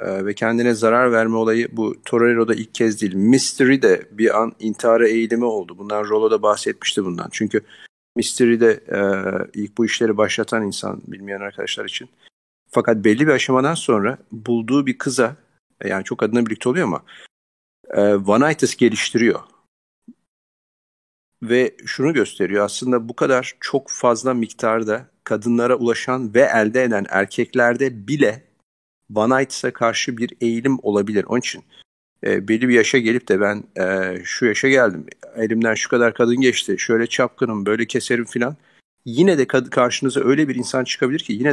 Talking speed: 145 wpm